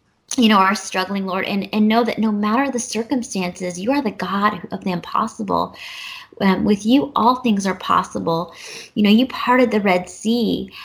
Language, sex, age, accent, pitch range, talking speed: English, female, 20-39, American, 185-230 Hz, 190 wpm